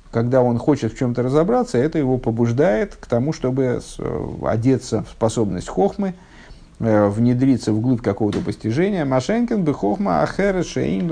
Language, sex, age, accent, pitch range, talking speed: Russian, male, 50-69, native, 120-160 Hz, 135 wpm